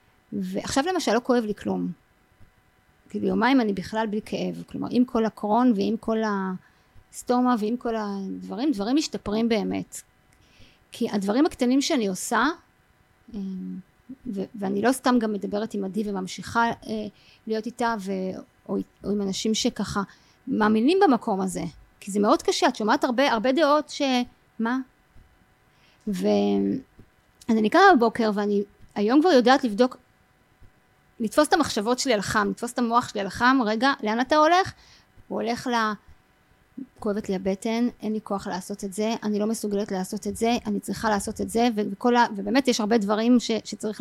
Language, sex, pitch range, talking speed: Hebrew, female, 205-250 Hz, 160 wpm